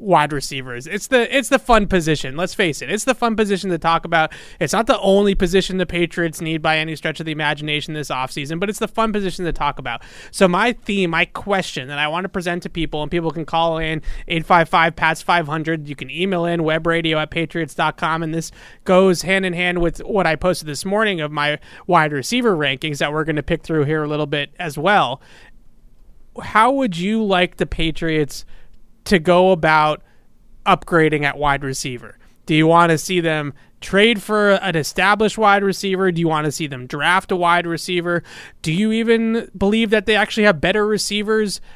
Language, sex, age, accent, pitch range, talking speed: English, male, 30-49, American, 155-195 Hz, 200 wpm